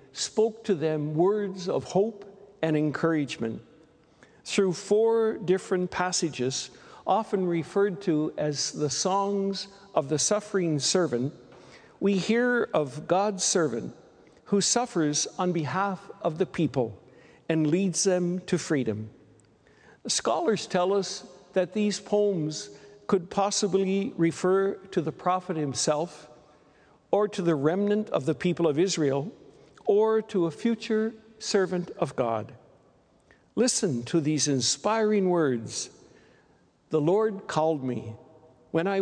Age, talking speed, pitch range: 60-79, 120 wpm, 150-200 Hz